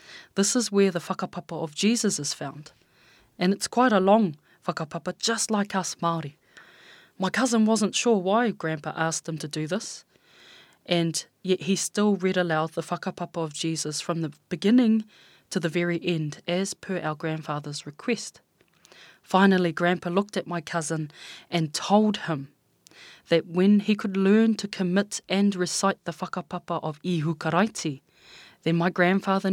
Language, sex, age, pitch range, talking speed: English, female, 20-39, 160-195 Hz, 155 wpm